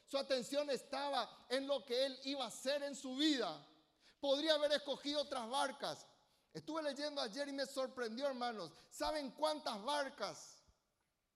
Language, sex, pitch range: Spanish, male, 230-280 Hz